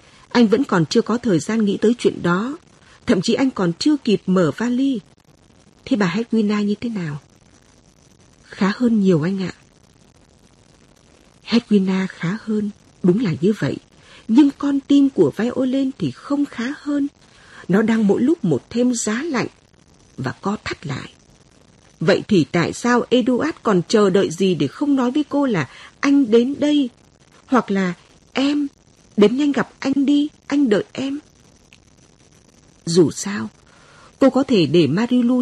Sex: female